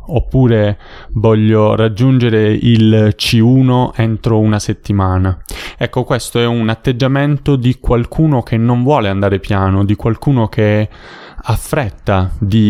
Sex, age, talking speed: male, 20-39, 125 wpm